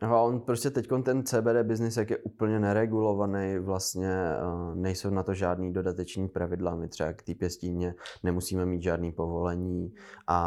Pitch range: 85-90 Hz